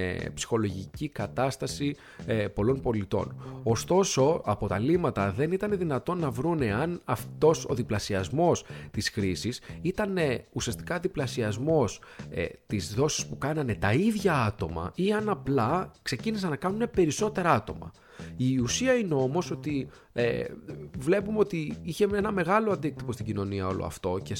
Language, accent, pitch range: Greek, native, 100-140 Hz